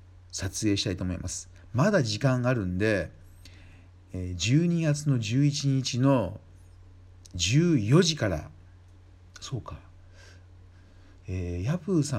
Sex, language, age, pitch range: male, Japanese, 50-69, 90-135 Hz